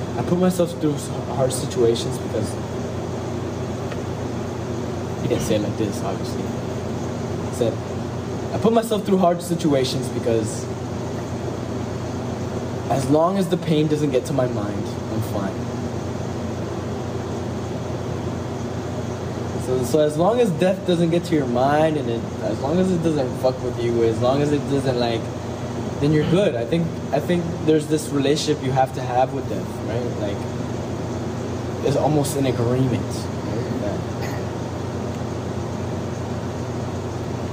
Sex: male